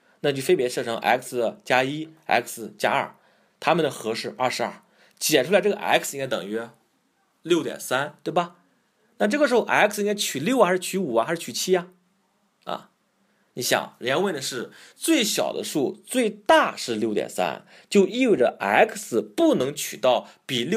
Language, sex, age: Chinese, male, 30-49